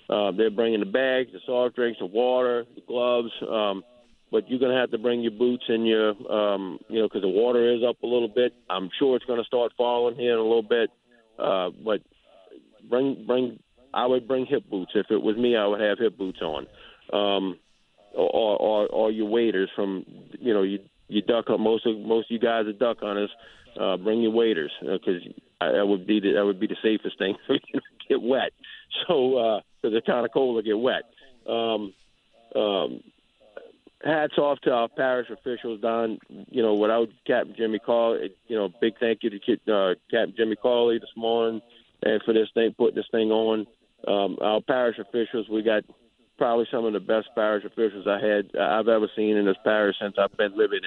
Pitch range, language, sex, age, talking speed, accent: 105-120 Hz, English, male, 50-69, 210 wpm, American